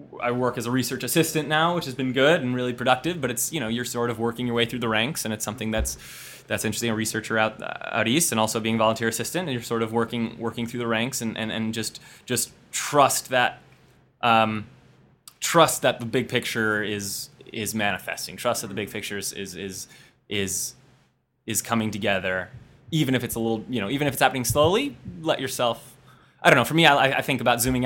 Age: 20-39